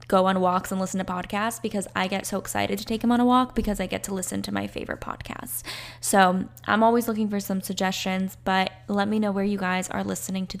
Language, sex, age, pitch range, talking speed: English, female, 10-29, 190-215 Hz, 250 wpm